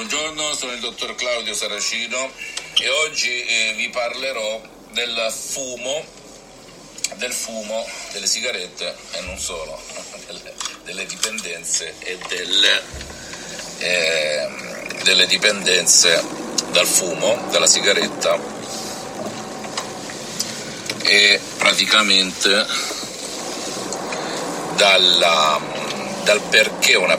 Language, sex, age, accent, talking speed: Italian, male, 50-69, native, 80 wpm